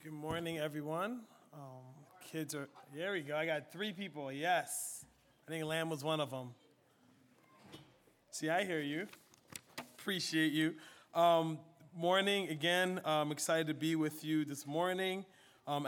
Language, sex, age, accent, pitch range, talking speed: English, male, 30-49, American, 155-185 Hz, 145 wpm